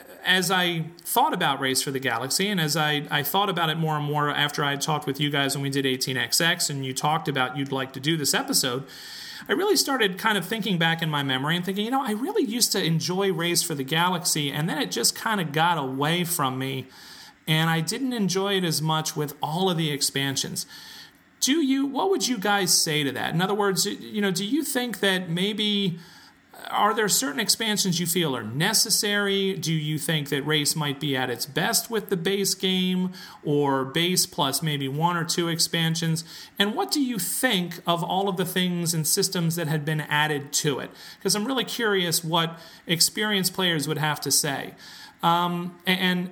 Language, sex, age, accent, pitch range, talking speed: English, male, 40-59, American, 150-195 Hz, 210 wpm